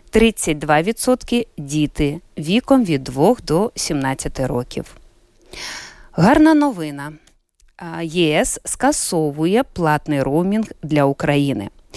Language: Ukrainian